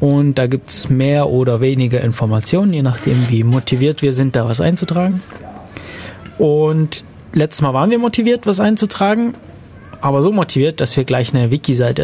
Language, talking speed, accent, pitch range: German, 165 wpm, German, 125-170 Hz